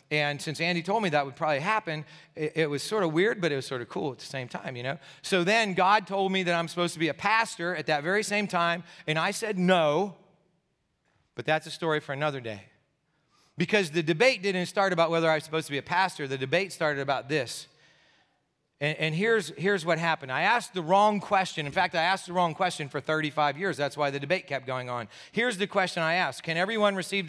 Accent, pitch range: American, 150-185 Hz